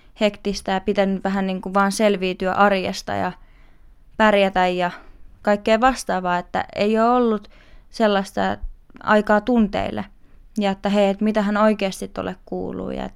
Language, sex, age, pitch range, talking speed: Finnish, female, 20-39, 185-215 Hz, 130 wpm